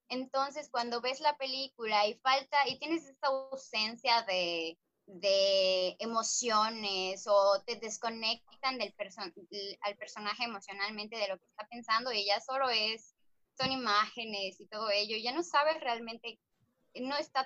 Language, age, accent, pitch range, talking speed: Spanish, 20-39, Mexican, 205-260 Hz, 150 wpm